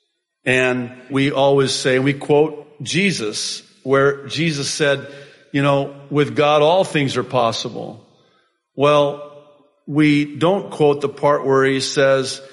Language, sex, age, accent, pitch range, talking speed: English, male, 50-69, American, 145-190 Hz, 130 wpm